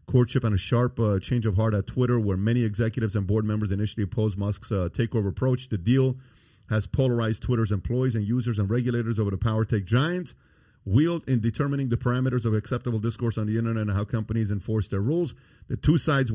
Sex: male